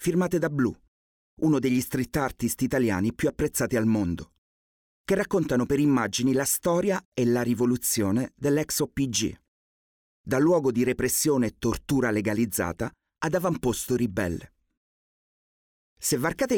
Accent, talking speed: native, 125 wpm